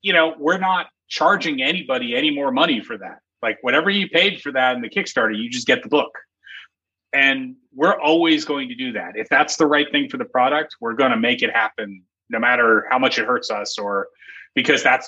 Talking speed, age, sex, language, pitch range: 225 wpm, 30-49, male, English, 110-180 Hz